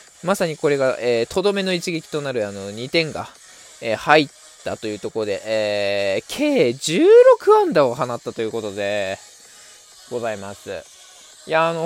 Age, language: 20-39, Japanese